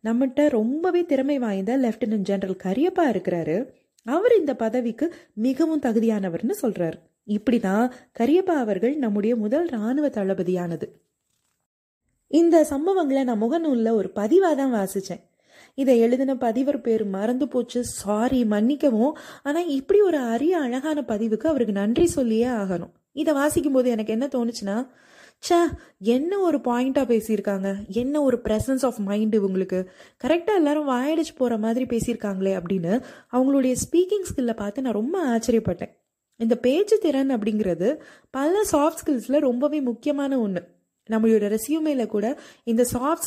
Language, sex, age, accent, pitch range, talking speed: Tamil, female, 20-39, native, 215-290 Hz, 100 wpm